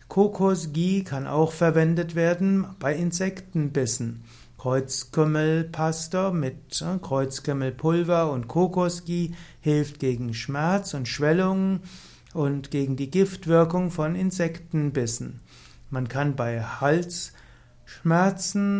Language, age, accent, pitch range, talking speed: German, 60-79, German, 140-180 Hz, 85 wpm